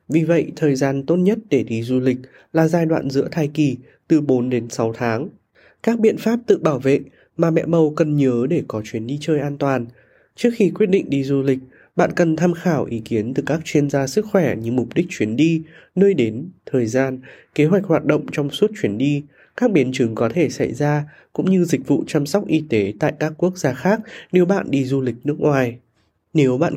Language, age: Vietnamese, 20-39